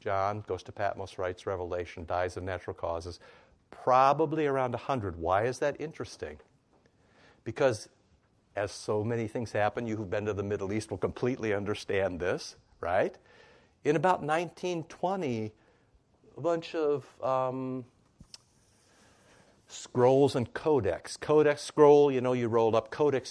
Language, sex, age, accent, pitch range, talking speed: English, male, 60-79, American, 105-145 Hz, 135 wpm